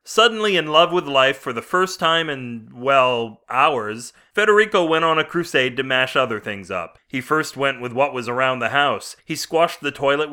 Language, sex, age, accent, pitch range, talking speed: English, male, 30-49, American, 115-155 Hz, 205 wpm